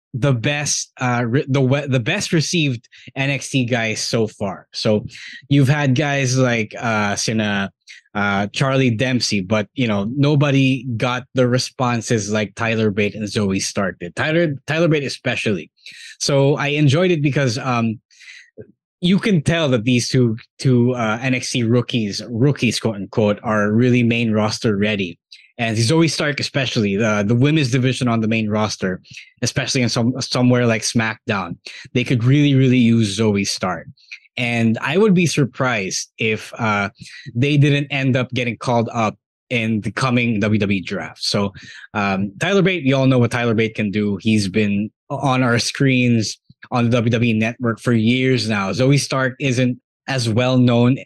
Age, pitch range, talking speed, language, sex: 20-39, 110-135 Hz, 160 wpm, English, male